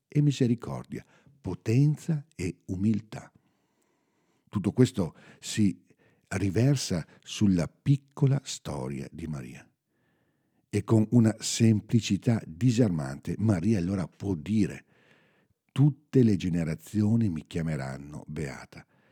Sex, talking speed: male, 90 wpm